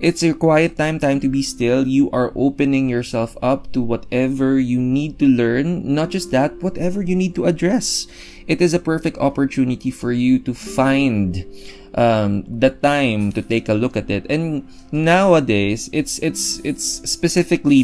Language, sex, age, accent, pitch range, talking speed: English, male, 20-39, Filipino, 110-150 Hz, 170 wpm